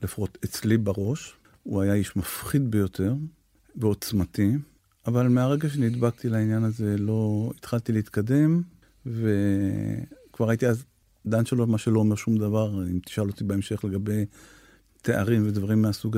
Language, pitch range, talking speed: Hebrew, 100-120 Hz, 130 wpm